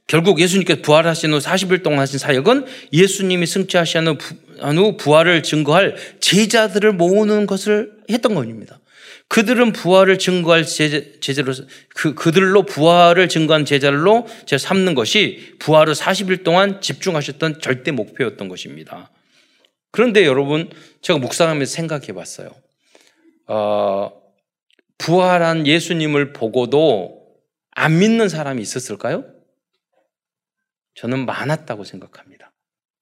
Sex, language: male, Korean